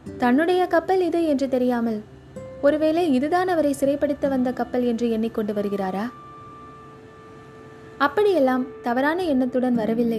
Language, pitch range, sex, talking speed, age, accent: Tamil, 200-275 Hz, female, 105 wpm, 20-39, native